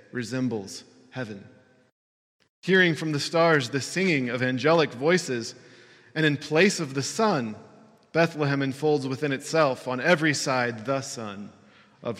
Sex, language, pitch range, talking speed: male, English, 125-165 Hz, 135 wpm